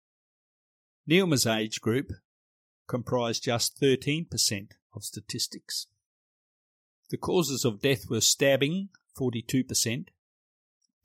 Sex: male